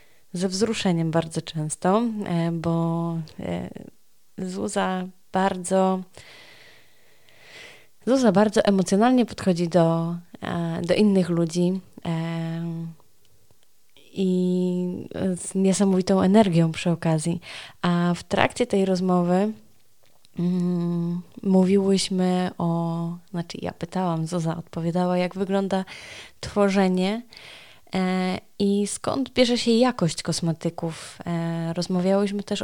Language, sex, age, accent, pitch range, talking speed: Polish, female, 20-39, native, 170-195 Hz, 85 wpm